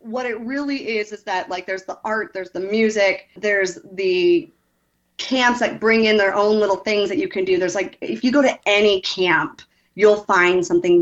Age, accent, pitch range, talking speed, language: 30-49, American, 175-220 Hz, 205 wpm, English